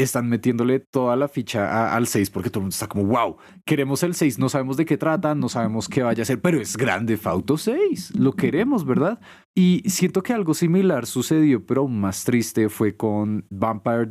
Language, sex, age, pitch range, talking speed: Spanish, male, 30-49, 110-155 Hz, 210 wpm